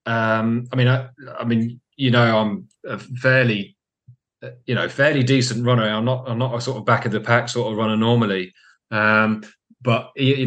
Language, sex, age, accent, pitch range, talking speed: English, male, 30-49, British, 110-125 Hz, 195 wpm